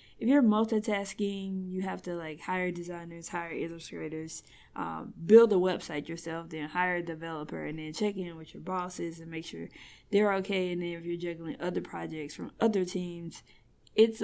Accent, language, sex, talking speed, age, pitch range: American, English, female, 180 wpm, 20-39, 170-195 Hz